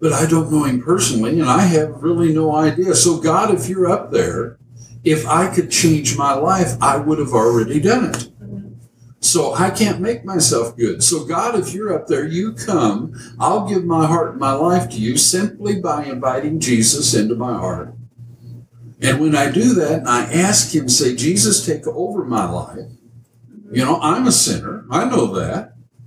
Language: English